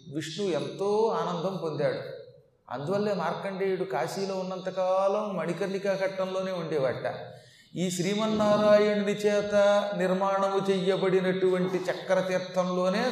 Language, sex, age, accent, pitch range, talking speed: Telugu, male, 30-49, native, 155-200 Hz, 80 wpm